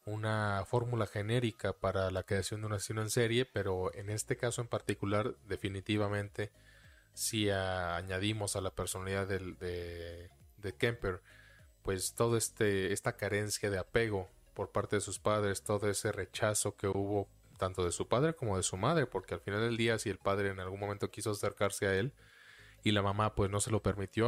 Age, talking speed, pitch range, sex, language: 20-39, 190 wpm, 95-110 Hz, male, Spanish